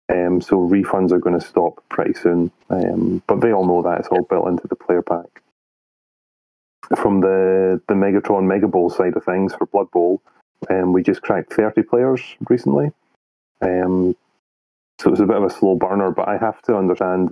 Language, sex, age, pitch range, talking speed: English, male, 30-49, 85-100 Hz, 185 wpm